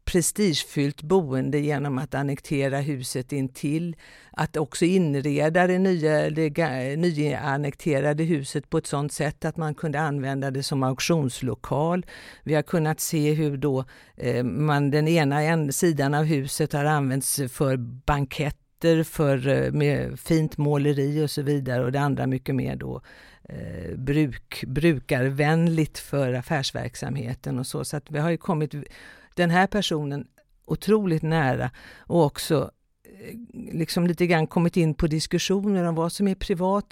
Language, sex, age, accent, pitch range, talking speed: Swedish, female, 50-69, native, 140-165 Hz, 150 wpm